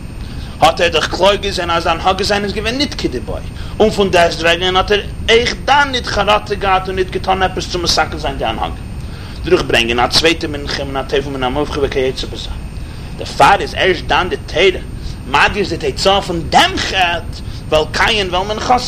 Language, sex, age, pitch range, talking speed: English, male, 40-59, 170-230 Hz, 115 wpm